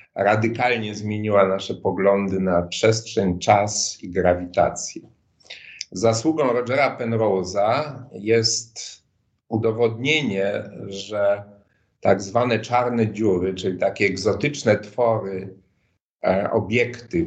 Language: Polish